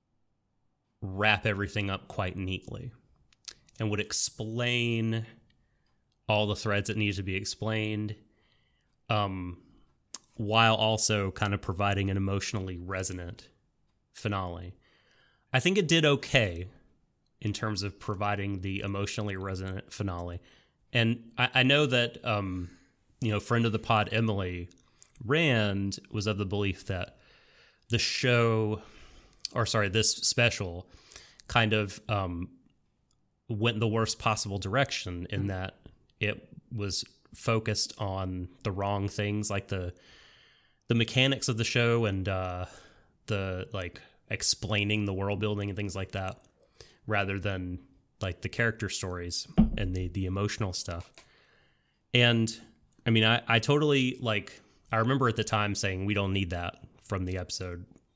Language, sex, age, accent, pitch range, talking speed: English, male, 30-49, American, 95-115 Hz, 135 wpm